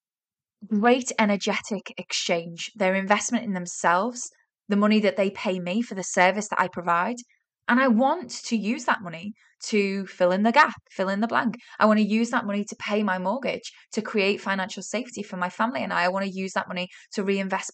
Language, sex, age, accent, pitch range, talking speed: English, female, 10-29, British, 190-245 Hz, 210 wpm